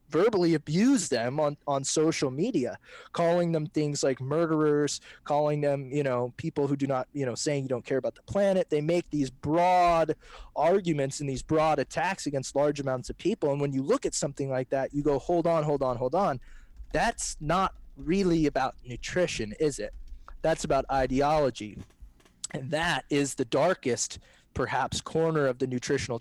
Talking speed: 180 wpm